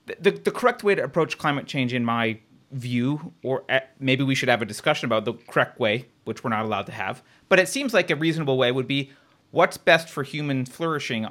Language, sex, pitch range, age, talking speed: English, male, 120-185 Hz, 30-49, 225 wpm